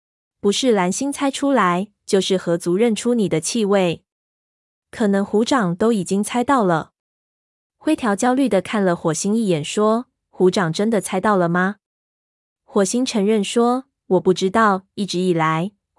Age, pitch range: 20-39, 175-220 Hz